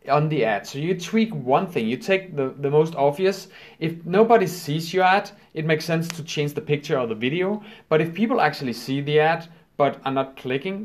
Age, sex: 30-49, male